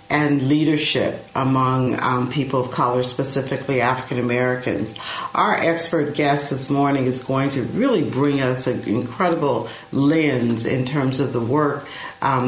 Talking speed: 145 wpm